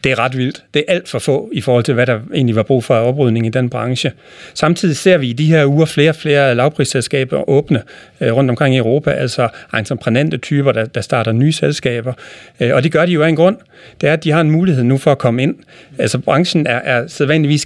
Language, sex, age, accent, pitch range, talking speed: Danish, male, 40-59, native, 120-145 Hz, 250 wpm